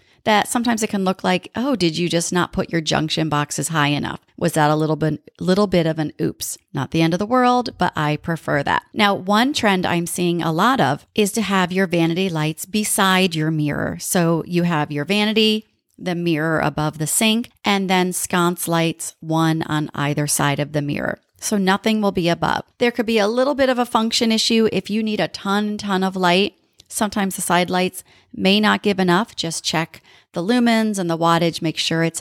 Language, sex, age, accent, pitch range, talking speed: English, female, 40-59, American, 160-210 Hz, 215 wpm